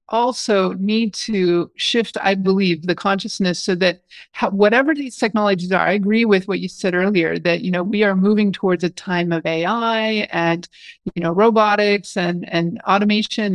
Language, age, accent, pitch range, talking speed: English, 40-59, American, 175-215 Hz, 175 wpm